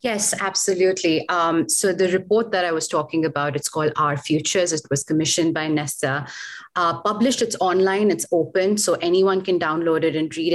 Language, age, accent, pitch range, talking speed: English, 30-49, Indian, 150-190 Hz, 180 wpm